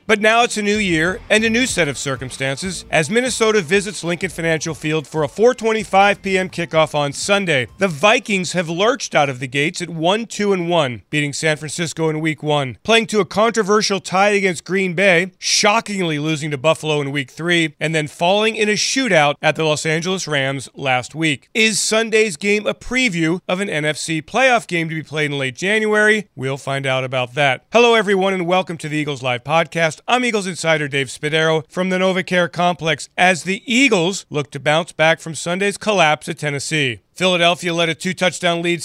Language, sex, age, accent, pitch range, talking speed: English, male, 40-59, American, 150-200 Hz, 195 wpm